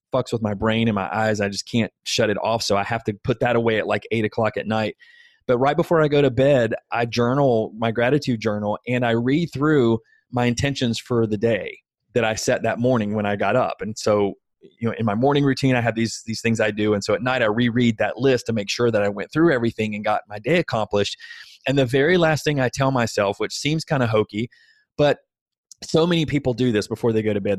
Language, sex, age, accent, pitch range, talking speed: English, male, 20-39, American, 115-145 Hz, 250 wpm